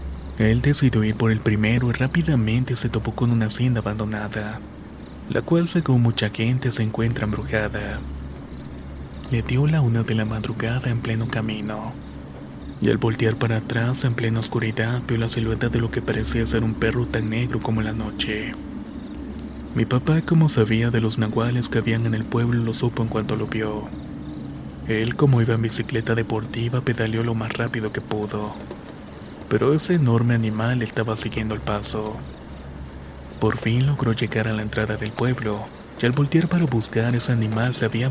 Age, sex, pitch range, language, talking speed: 30-49, male, 105-120 Hz, Spanish, 175 wpm